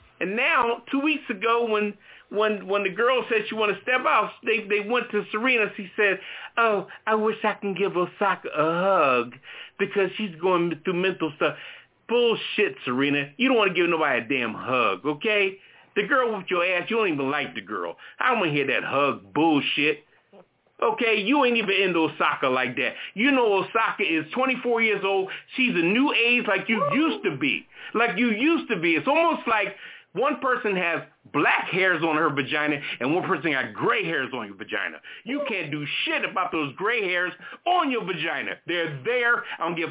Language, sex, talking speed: English, male, 200 wpm